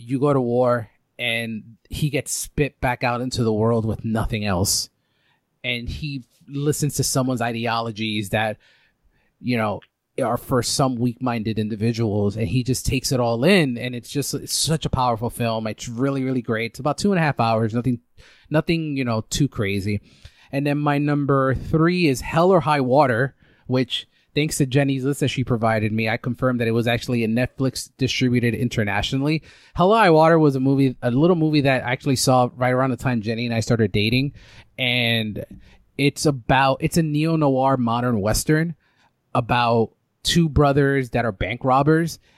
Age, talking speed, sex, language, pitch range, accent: 30-49, 185 wpm, male, English, 115-140 Hz, American